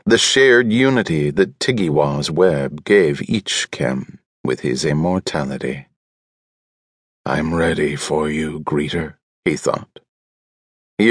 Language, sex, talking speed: English, male, 110 wpm